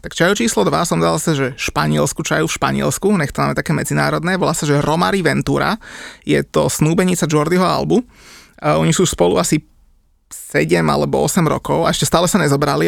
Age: 20-39